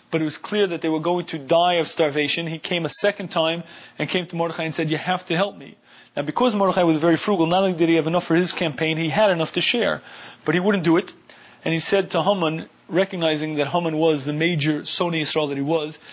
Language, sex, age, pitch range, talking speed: English, male, 30-49, 160-190 Hz, 255 wpm